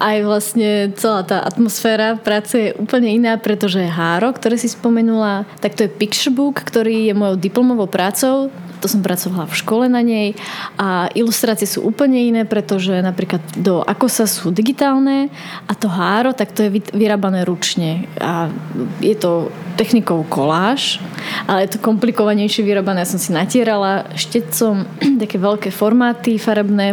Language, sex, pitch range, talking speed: Slovak, female, 185-225 Hz, 155 wpm